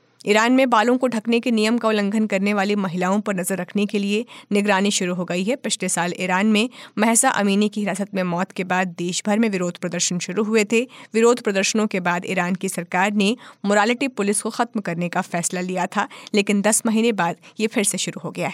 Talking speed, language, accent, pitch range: 225 wpm, Hindi, native, 185-225 Hz